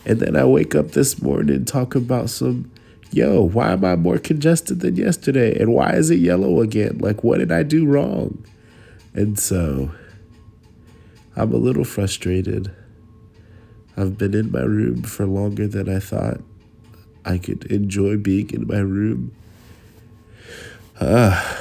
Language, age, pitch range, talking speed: English, 20-39, 85-110 Hz, 155 wpm